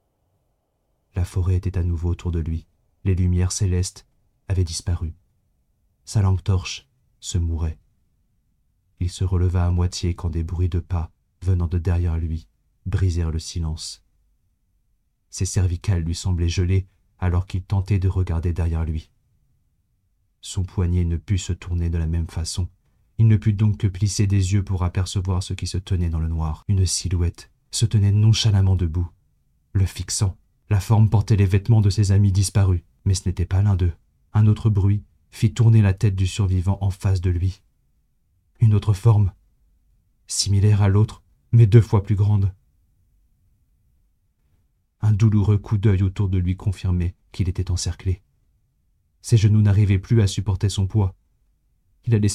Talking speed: 160 wpm